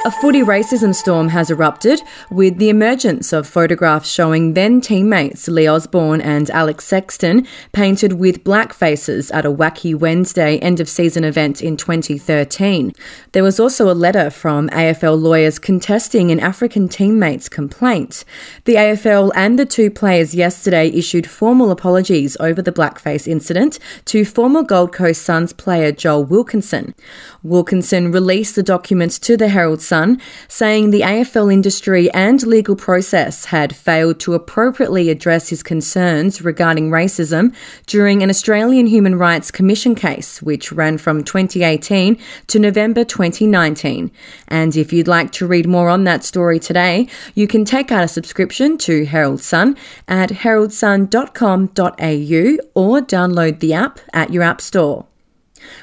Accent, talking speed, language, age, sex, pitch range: Australian, 145 wpm, English, 30-49, female, 165-215 Hz